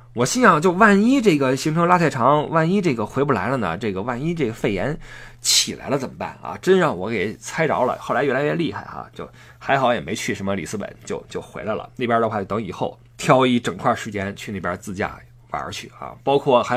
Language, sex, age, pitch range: Chinese, male, 20-39, 105-140 Hz